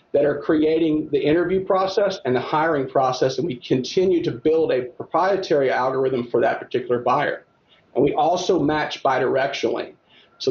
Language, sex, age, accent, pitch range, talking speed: English, male, 40-59, American, 135-190 Hz, 160 wpm